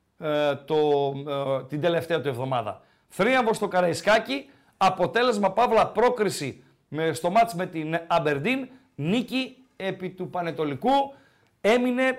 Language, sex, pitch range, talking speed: Greek, male, 165-220 Hz, 120 wpm